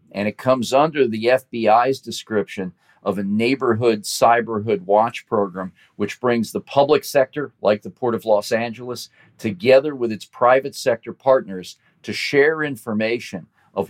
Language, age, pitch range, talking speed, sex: English, 40-59, 105-130 Hz, 145 wpm, male